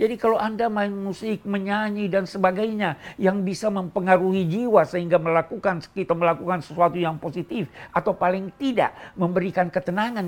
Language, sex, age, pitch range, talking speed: Indonesian, male, 50-69, 145-190 Hz, 140 wpm